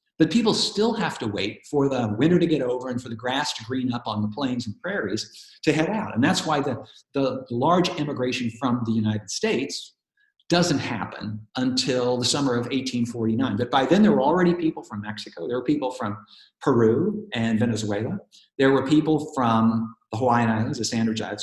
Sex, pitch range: male, 120-170 Hz